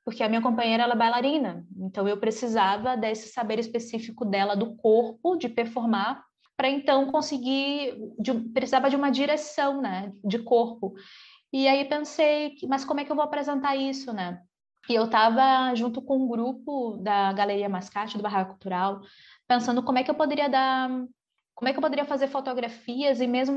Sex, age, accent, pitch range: female, 20-39, Brazilian, 230-275 Hz